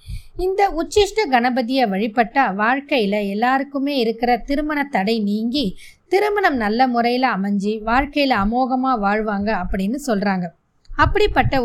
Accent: native